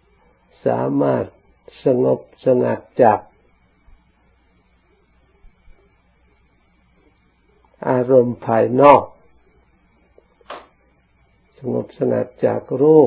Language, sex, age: Thai, male, 60-79